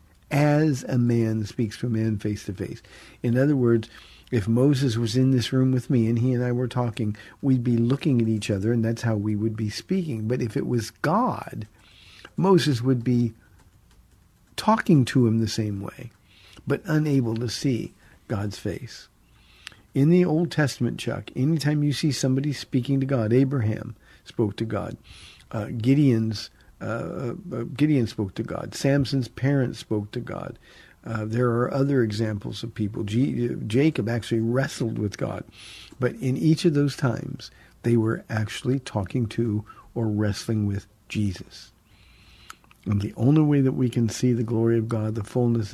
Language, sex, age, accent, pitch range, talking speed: English, male, 50-69, American, 105-130 Hz, 170 wpm